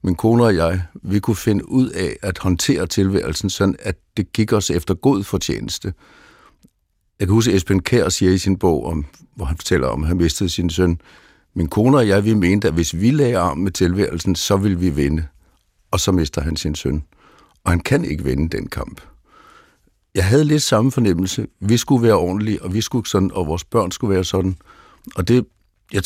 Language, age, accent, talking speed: Danish, 60-79, native, 210 wpm